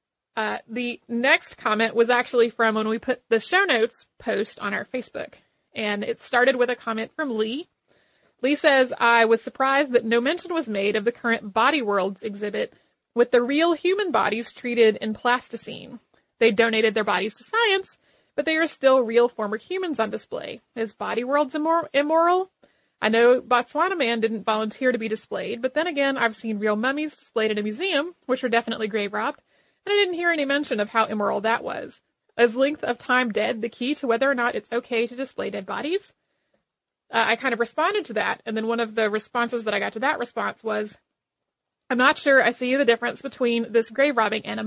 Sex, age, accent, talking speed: female, 30-49, American, 210 wpm